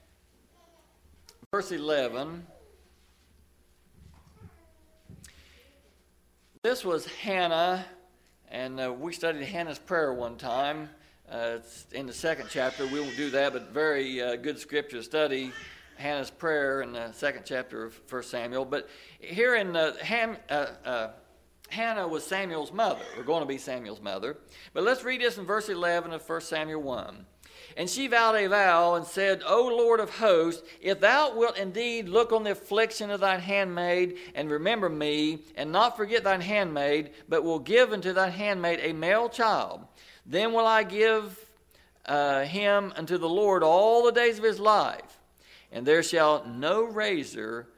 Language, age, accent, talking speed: English, 60-79, American, 155 wpm